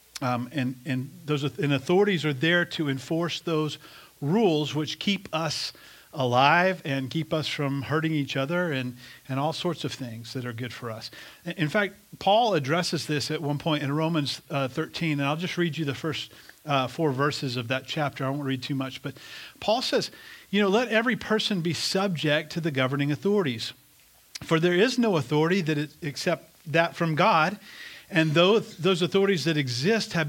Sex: male